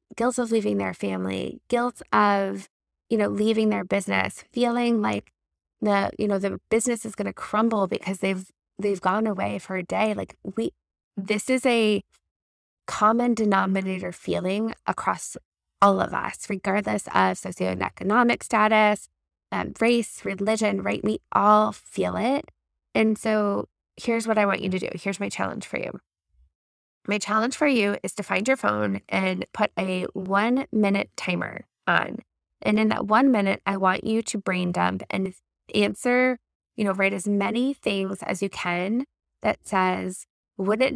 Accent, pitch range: American, 190-240 Hz